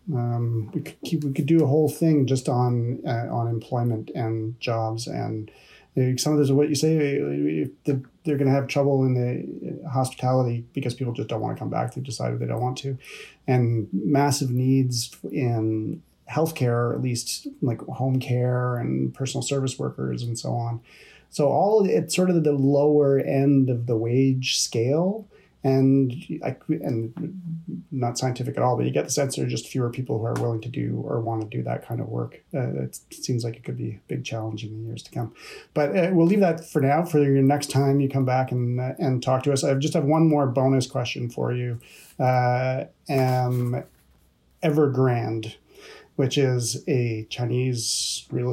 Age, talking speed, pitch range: 30-49, 195 wpm, 115-140 Hz